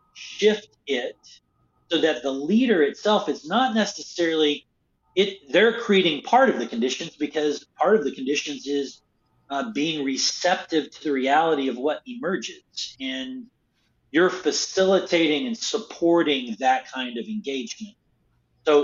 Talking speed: 135 wpm